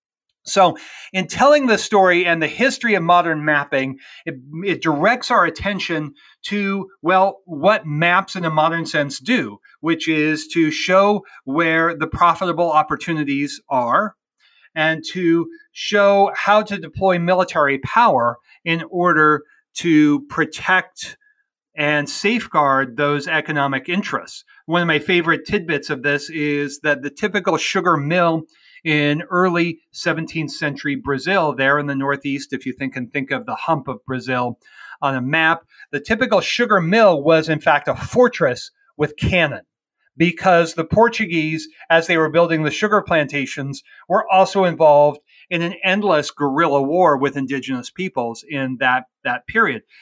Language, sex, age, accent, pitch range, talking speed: English, male, 40-59, American, 145-185 Hz, 145 wpm